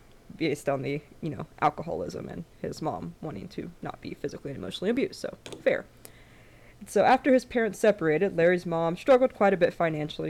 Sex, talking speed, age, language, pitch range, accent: female, 180 wpm, 20-39, English, 150-175 Hz, American